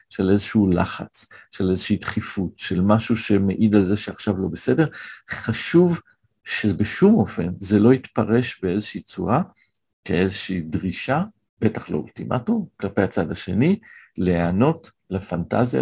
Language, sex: Hebrew, male